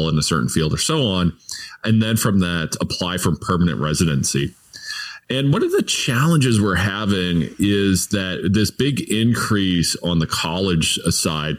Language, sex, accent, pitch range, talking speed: English, male, American, 90-120 Hz, 160 wpm